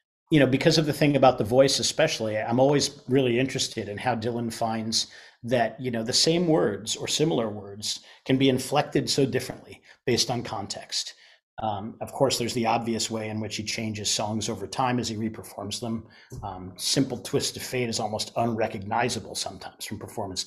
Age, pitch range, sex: 40-59, 110-135 Hz, male